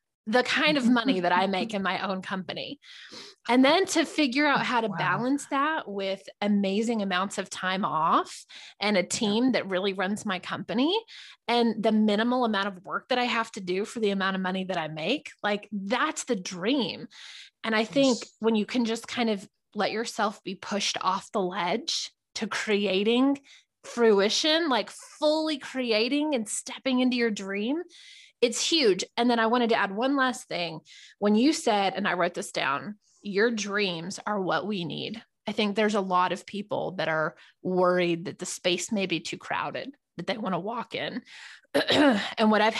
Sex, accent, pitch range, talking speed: female, American, 190-240 Hz, 190 wpm